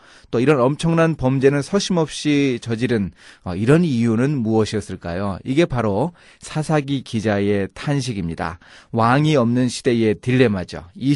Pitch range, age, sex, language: 110-145 Hz, 30-49, male, Korean